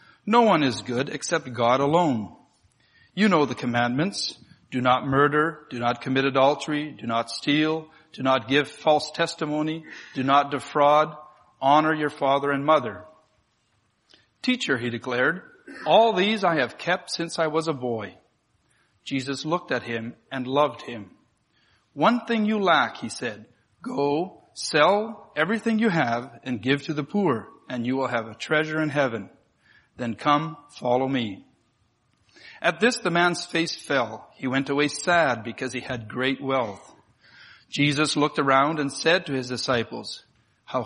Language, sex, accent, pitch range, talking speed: English, male, American, 130-165 Hz, 155 wpm